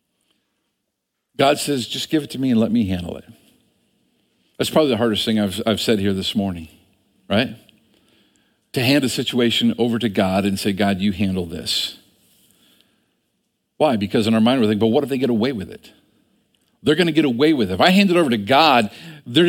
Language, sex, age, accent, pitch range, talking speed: English, male, 50-69, American, 100-135 Hz, 205 wpm